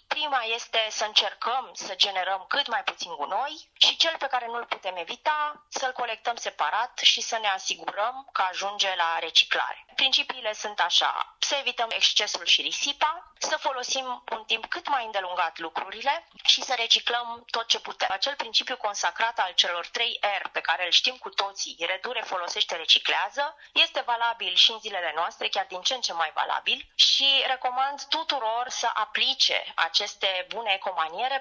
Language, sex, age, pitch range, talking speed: Romanian, female, 20-39, 210-275 Hz, 170 wpm